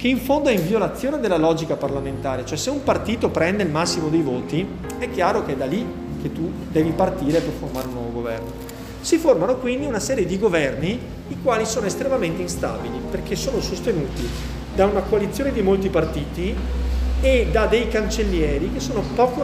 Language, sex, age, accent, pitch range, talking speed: Italian, male, 40-59, native, 140-210 Hz, 190 wpm